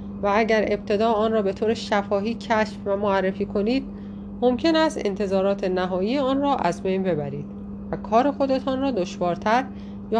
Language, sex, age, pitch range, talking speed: Persian, female, 30-49, 180-225 Hz, 160 wpm